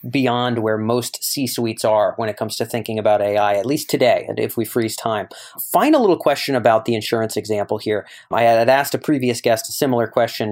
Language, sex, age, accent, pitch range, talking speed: English, male, 30-49, American, 115-140 Hz, 205 wpm